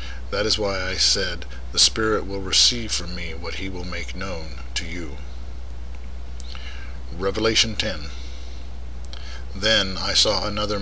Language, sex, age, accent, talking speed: English, male, 50-69, American, 135 wpm